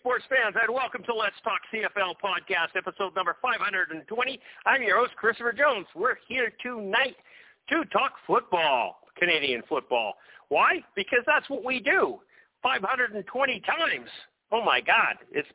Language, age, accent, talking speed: English, 50-69, American, 145 wpm